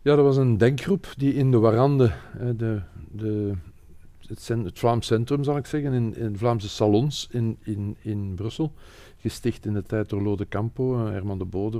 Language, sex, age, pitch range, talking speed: Dutch, male, 50-69, 100-120 Hz, 185 wpm